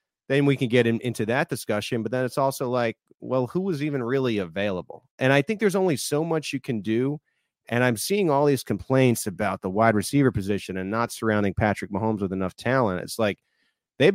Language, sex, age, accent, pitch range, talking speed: English, male, 40-59, American, 110-155 Hz, 210 wpm